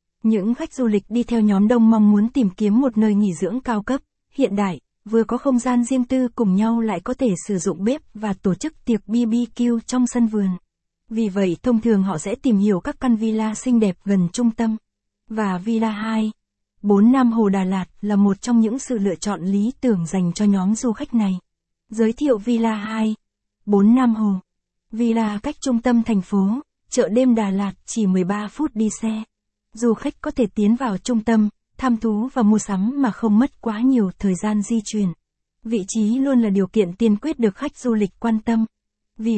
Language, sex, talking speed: Vietnamese, female, 215 wpm